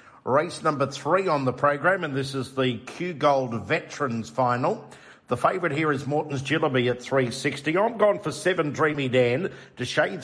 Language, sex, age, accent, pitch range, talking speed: English, male, 50-69, Australian, 125-155 Hz, 175 wpm